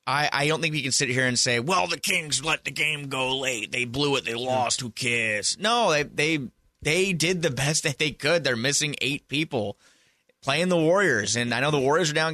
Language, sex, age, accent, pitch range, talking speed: English, male, 30-49, American, 115-150 Hz, 240 wpm